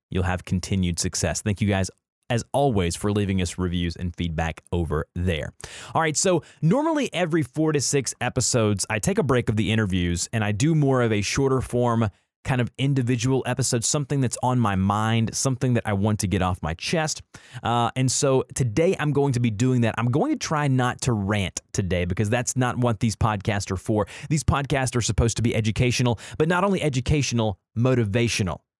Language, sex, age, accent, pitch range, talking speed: English, male, 30-49, American, 105-140 Hz, 200 wpm